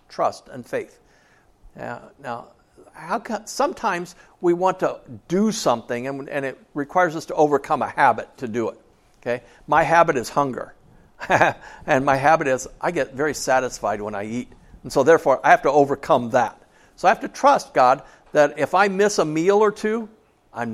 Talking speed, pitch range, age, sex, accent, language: 185 wpm, 125-180 Hz, 60-79, male, American, English